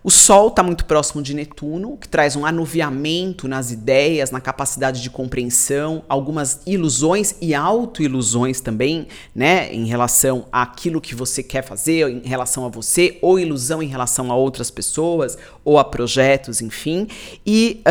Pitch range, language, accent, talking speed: 130-165 Hz, Portuguese, Brazilian, 155 wpm